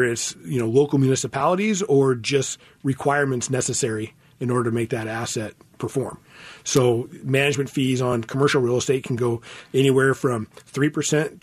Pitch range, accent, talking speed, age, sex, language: 120-145 Hz, American, 145 wpm, 40-59, male, English